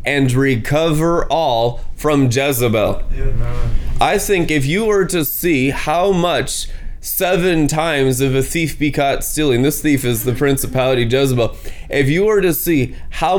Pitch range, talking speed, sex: 120-155 Hz, 150 wpm, male